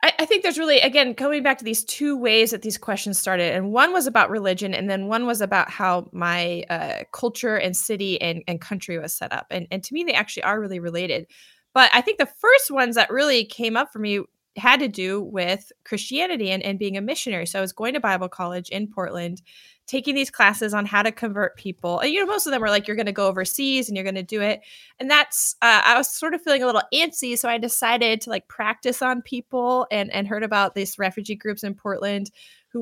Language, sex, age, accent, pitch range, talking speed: English, female, 20-39, American, 195-265 Hz, 240 wpm